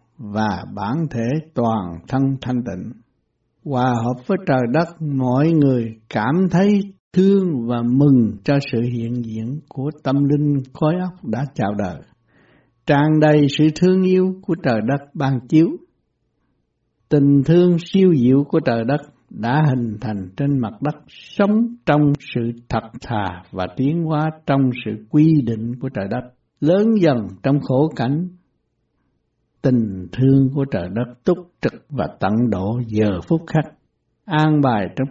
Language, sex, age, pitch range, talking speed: Vietnamese, male, 60-79, 115-155 Hz, 155 wpm